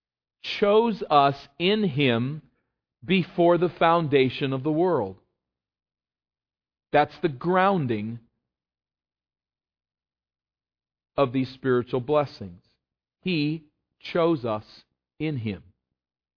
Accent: American